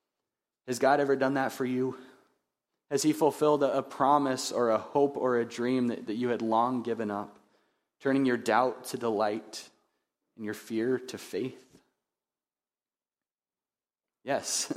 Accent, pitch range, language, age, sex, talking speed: American, 110-135 Hz, English, 30-49, male, 140 wpm